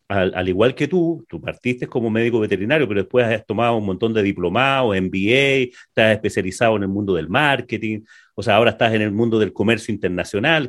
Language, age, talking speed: Spanish, 40-59, 200 wpm